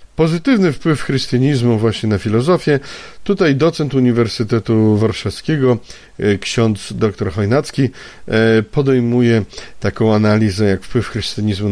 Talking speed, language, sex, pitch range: 95 wpm, Polish, male, 105-130 Hz